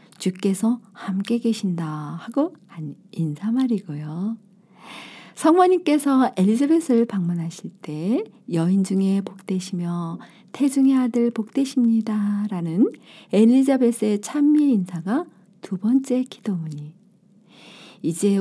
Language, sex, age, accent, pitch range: Korean, female, 50-69, native, 185-250 Hz